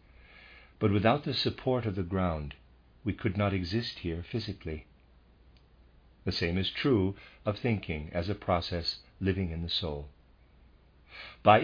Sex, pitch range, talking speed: male, 75-105 Hz, 140 wpm